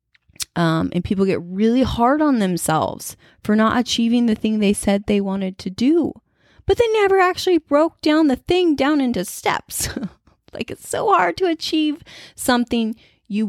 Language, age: English, 20-39